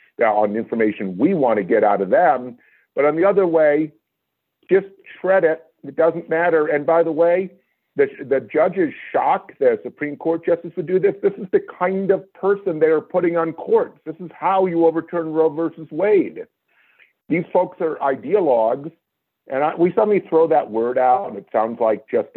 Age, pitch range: 50-69, 130-195 Hz